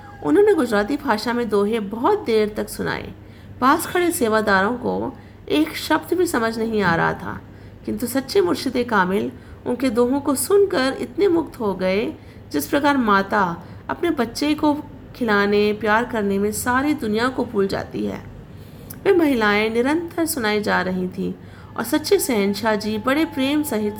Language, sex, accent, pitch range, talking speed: Hindi, female, native, 195-280 Hz, 160 wpm